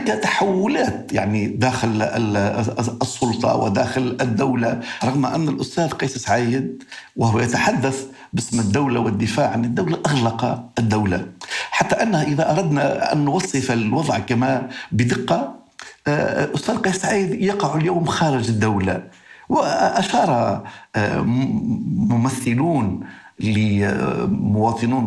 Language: Arabic